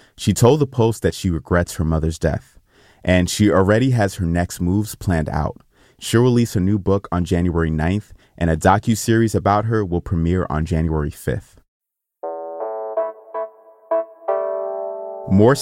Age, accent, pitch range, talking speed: 30-49, American, 85-110 Hz, 145 wpm